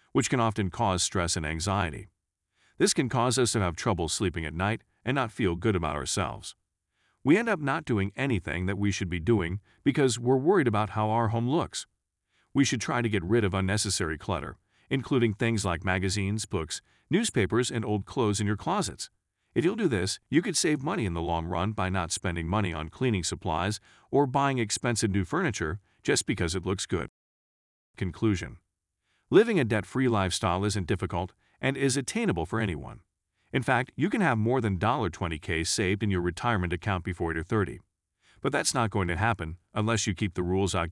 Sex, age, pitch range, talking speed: male, 40-59, 95-125 Hz, 195 wpm